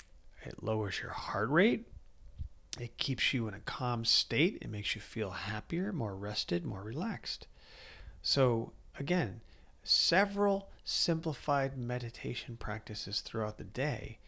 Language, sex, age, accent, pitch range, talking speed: English, male, 40-59, American, 105-135 Hz, 125 wpm